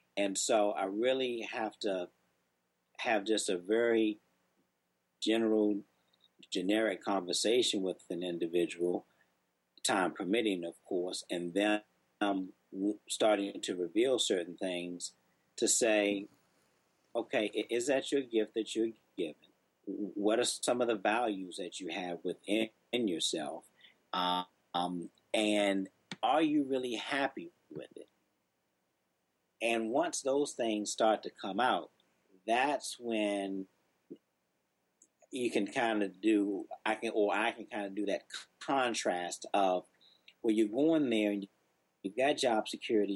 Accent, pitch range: American, 85-115 Hz